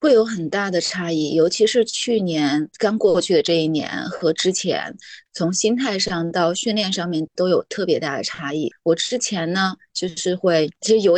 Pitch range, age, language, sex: 160-215 Hz, 20-39, Chinese, female